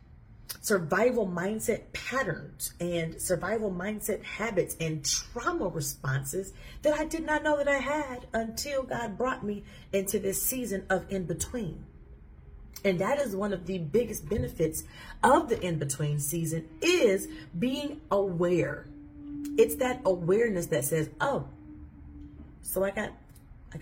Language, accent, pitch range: English, American, 155-230 Hz